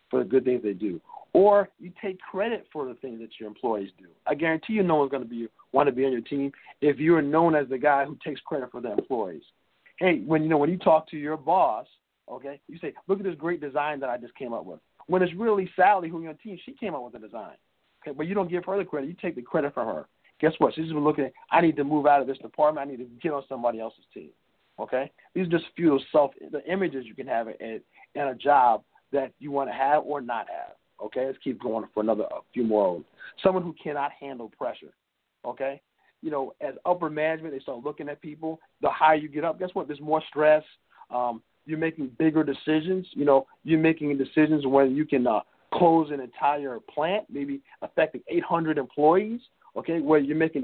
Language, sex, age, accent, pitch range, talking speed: English, male, 50-69, American, 140-165 Hz, 240 wpm